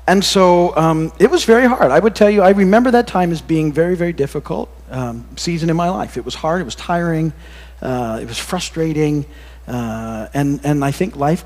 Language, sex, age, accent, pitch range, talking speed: English, male, 40-59, American, 105-165 Hz, 215 wpm